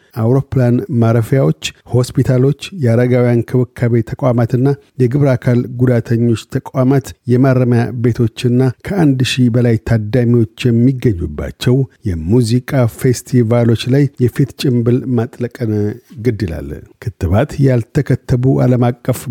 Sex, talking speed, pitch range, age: male, 75 wpm, 115-130 Hz, 50-69